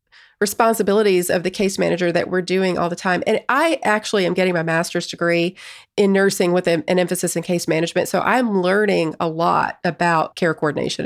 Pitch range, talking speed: 170-210 Hz, 190 wpm